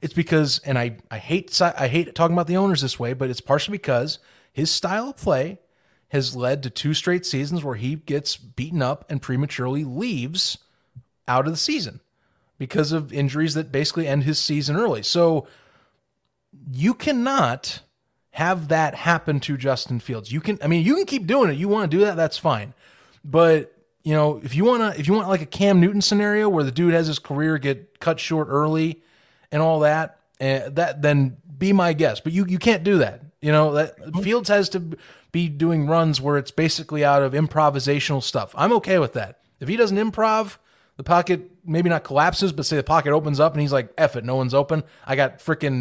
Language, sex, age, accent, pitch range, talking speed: English, male, 30-49, American, 140-175 Hz, 210 wpm